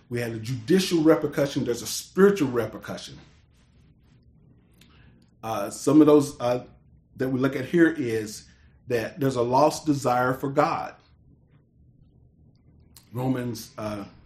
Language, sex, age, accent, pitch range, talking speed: English, male, 40-59, American, 125-150 Hz, 120 wpm